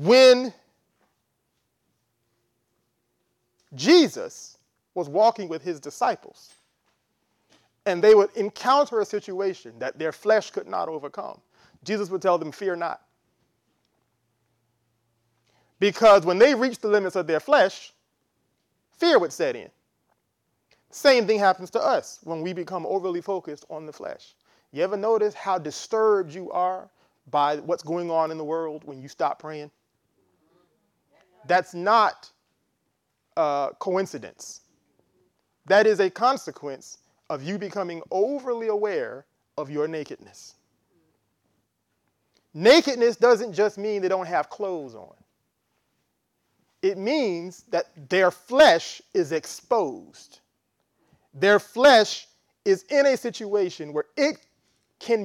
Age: 30-49